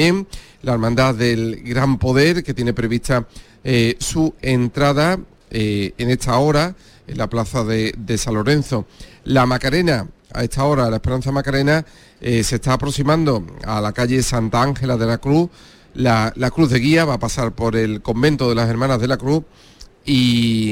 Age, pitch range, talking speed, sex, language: 40-59, 115-145 Hz, 175 wpm, male, Spanish